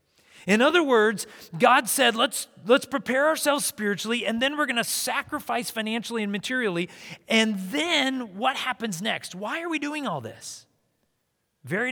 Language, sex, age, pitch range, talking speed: English, male, 40-59, 140-215 Hz, 155 wpm